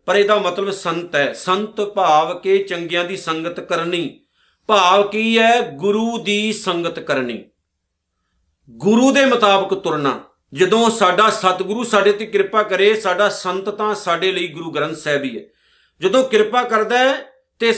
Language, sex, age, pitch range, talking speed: Punjabi, male, 50-69, 150-200 Hz, 150 wpm